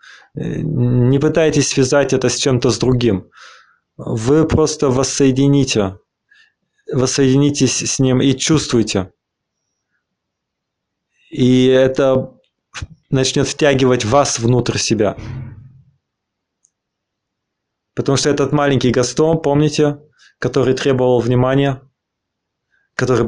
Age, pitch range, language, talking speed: 20-39, 120-140 Hz, English, 85 wpm